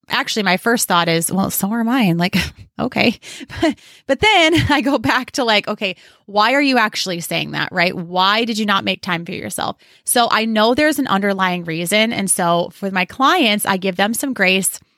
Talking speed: 205 wpm